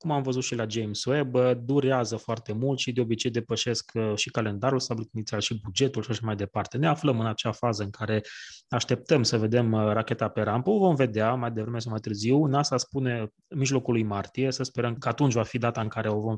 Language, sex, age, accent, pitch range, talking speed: Romanian, male, 20-39, native, 110-135 Hz, 225 wpm